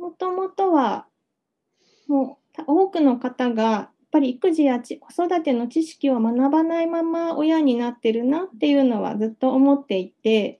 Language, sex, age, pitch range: Japanese, female, 20-39, 230-300 Hz